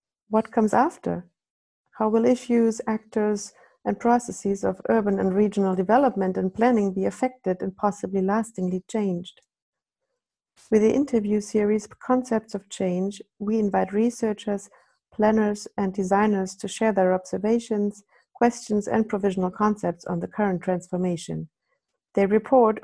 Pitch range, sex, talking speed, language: 185-220 Hz, female, 130 wpm, German